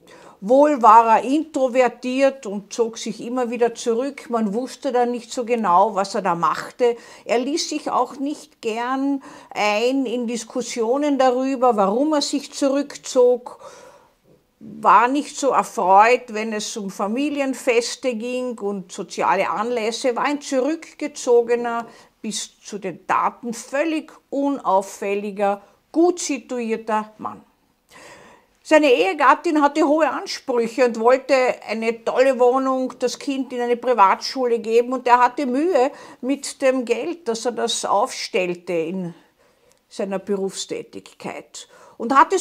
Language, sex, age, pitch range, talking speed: German, female, 50-69, 225-280 Hz, 125 wpm